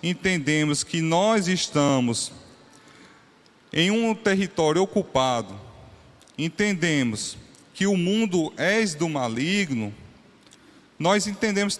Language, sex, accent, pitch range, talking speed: Portuguese, male, Brazilian, 140-195 Hz, 85 wpm